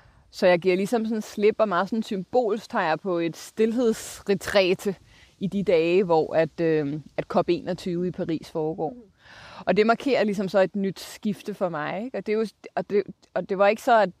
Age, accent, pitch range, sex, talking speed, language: 20-39, native, 170-210 Hz, female, 195 wpm, Danish